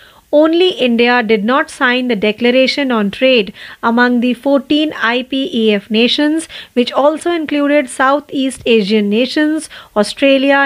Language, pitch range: Marathi, 225-290 Hz